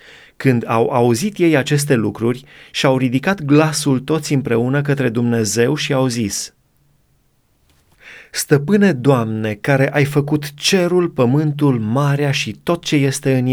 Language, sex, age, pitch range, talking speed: Romanian, male, 30-49, 120-155 Hz, 130 wpm